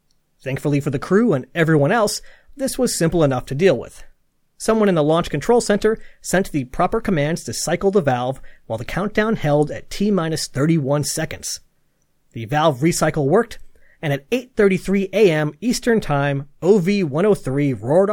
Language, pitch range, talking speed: English, 145-205 Hz, 155 wpm